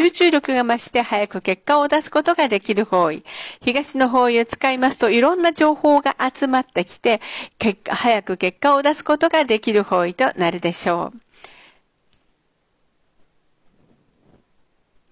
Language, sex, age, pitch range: Japanese, female, 50-69, 210-300 Hz